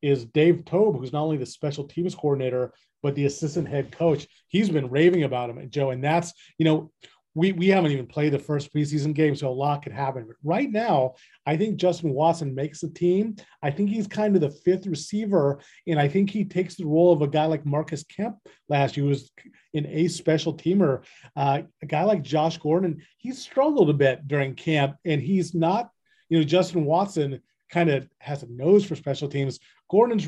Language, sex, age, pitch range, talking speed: English, male, 30-49, 140-175 Hz, 215 wpm